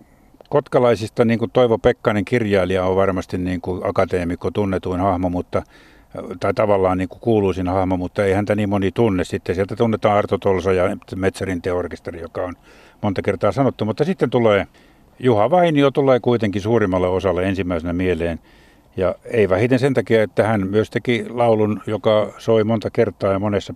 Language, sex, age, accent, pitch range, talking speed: Finnish, male, 60-79, native, 90-110 Hz, 160 wpm